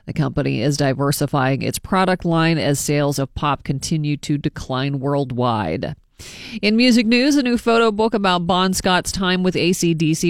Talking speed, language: 165 wpm, English